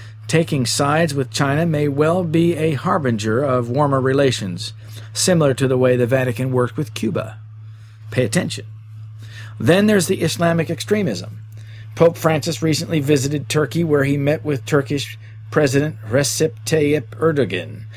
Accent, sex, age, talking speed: American, male, 50-69, 140 wpm